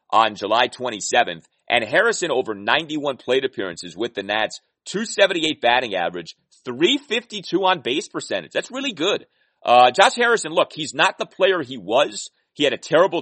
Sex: male